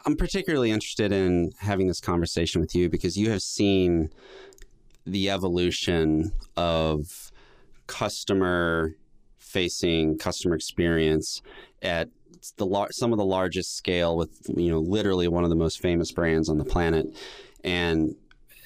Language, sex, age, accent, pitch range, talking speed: English, male, 30-49, American, 80-95 Hz, 130 wpm